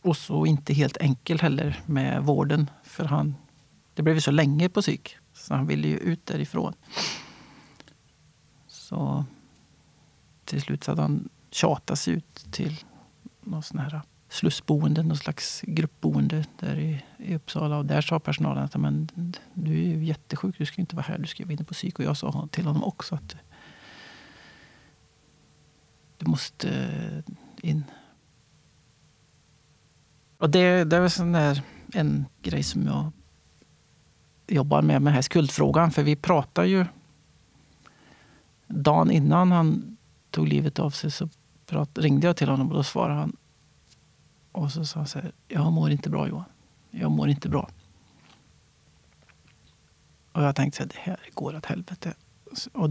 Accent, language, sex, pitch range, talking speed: native, Swedish, male, 145-170 Hz, 145 wpm